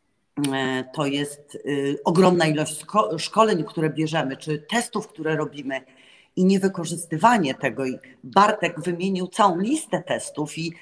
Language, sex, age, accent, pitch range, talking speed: Polish, female, 30-49, native, 150-190 Hz, 110 wpm